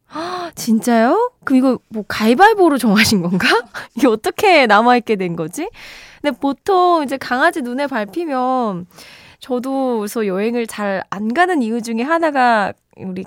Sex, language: female, Korean